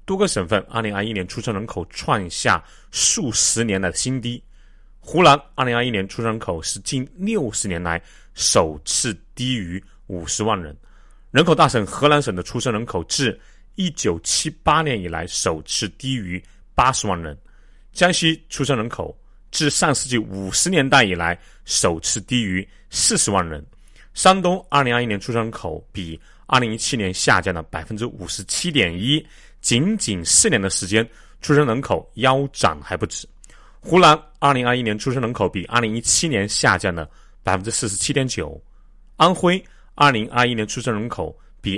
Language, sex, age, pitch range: Chinese, male, 30-49, 95-130 Hz